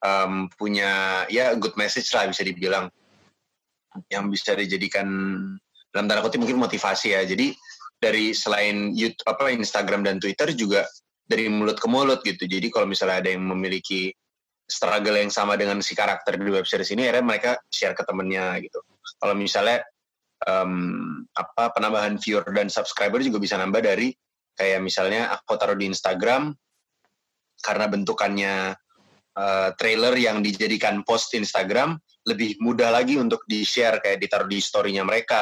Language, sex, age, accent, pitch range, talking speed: Indonesian, male, 20-39, native, 100-110 Hz, 145 wpm